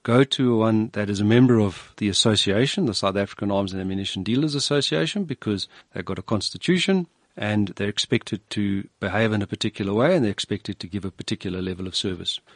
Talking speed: 200 wpm